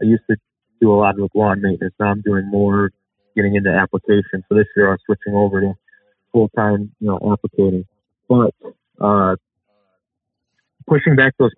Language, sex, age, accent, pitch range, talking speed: English, male, 30-49, American, 100-115 Hz, 165 wpm